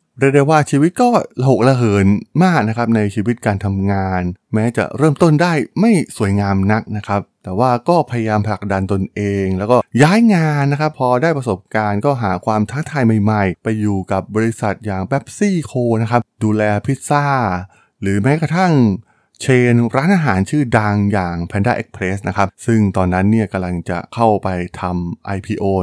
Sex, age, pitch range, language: male, 20-39, 95-125 Hz, Thai